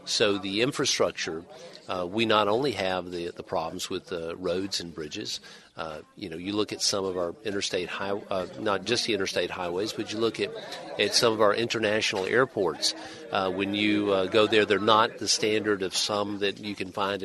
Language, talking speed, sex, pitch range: English, 205 wpm, male, 95-115 Hz